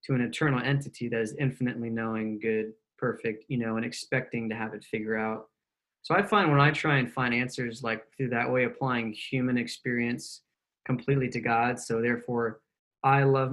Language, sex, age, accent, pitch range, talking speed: English, male, 20-39, American, 115-135 Hz, 185 wpm